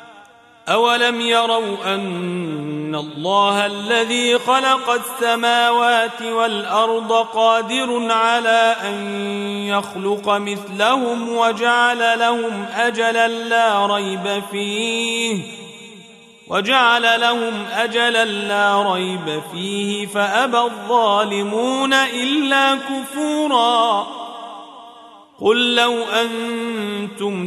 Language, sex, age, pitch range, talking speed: Arabic, male, 40-59, 205-235 Hz, 70 wpm